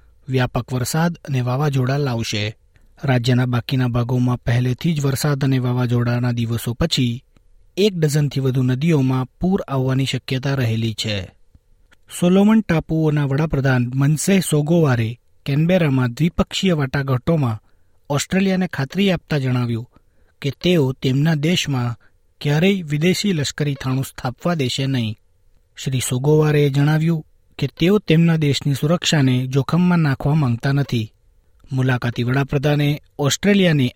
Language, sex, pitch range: Gujarati, male, 120-155 Hz